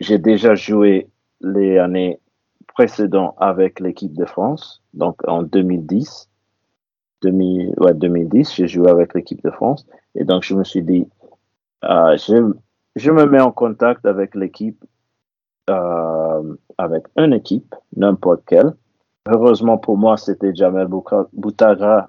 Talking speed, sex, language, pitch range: 135 wpm, male, French, 90-105 Hz